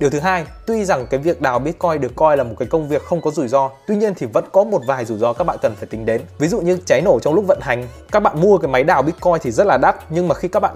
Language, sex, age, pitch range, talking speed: Vietnamese, male, 20-39, 135-185 Hz, 335 wpm